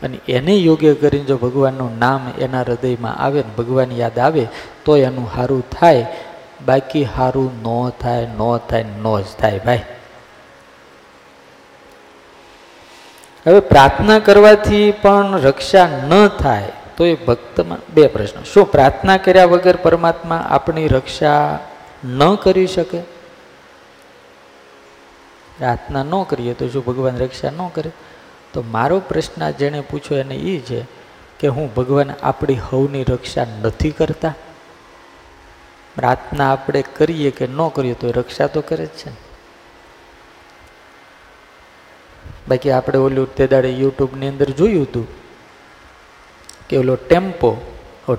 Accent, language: native, Gujarati